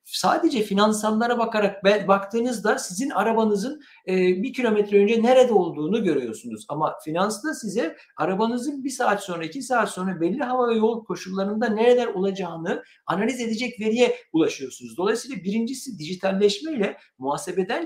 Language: Turkish